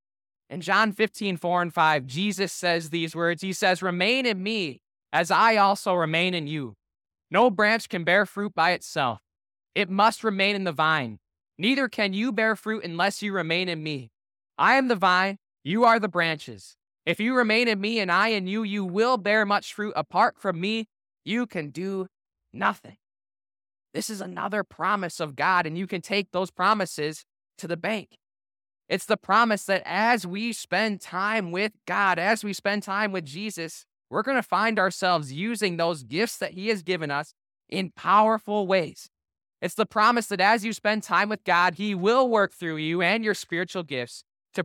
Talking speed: 185 wpm